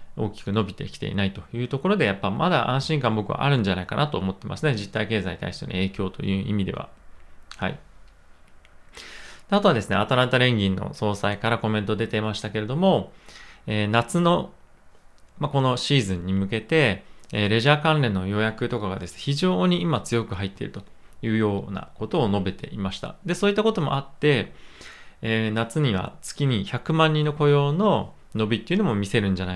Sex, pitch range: male, 100-150 Hz